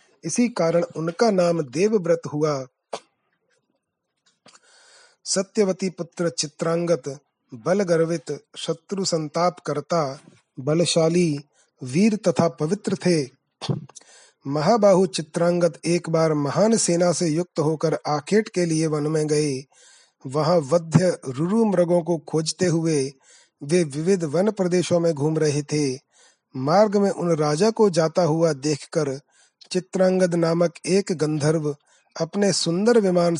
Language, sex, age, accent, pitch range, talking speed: Hindi, male, 30-49, native, 155-185 Hz, 115 wpm